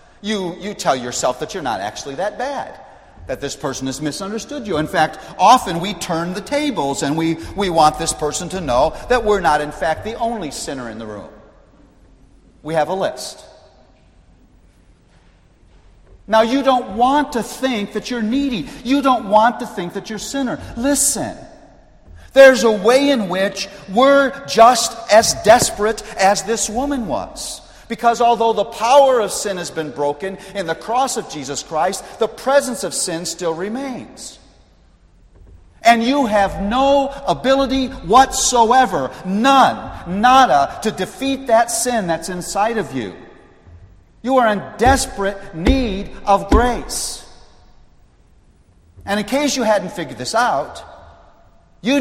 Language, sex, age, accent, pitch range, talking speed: English, male, 50-69, American, 160-250 Hz, 150 wpm